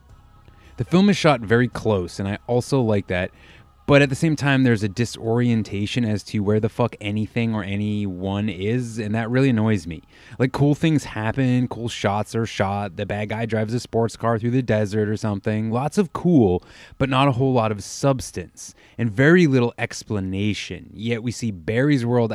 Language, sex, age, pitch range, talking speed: English, male, 20-39, 100-130 Hz, 195 wpm